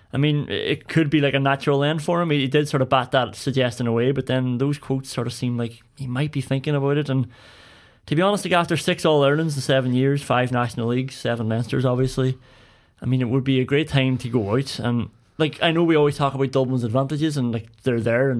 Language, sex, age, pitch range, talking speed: English, male, 20-39, 125-150 Hz, 250 wpm